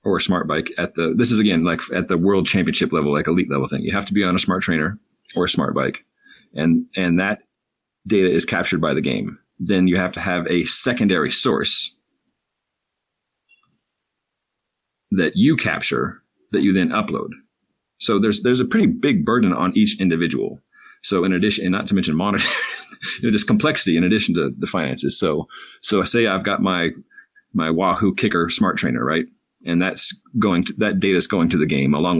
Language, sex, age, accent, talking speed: English, male, 40-59, American, 200 wpm